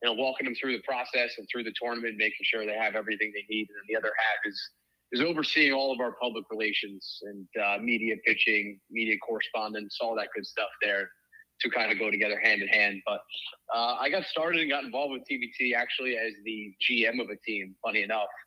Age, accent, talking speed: 20-39, American, 225 wpm